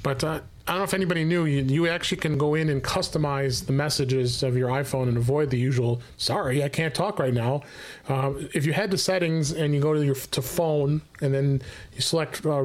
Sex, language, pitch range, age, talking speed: male, English, 130-155 Hz, 30-49, 230 wpm